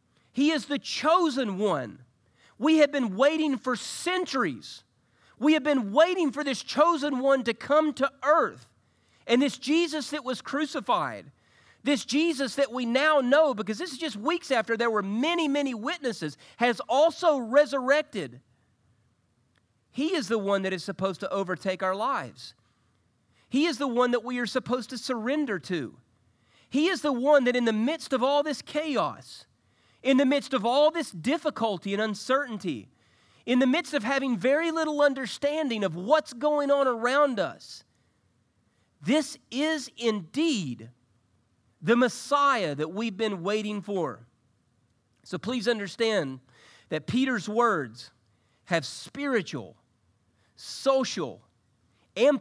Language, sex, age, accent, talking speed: English, male, 40-59, American, 145 wpm